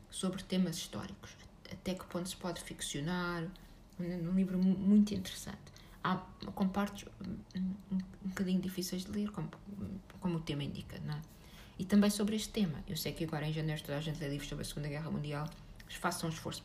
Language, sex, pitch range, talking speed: Portuguese, female, 155-185 Hz, 190 wpm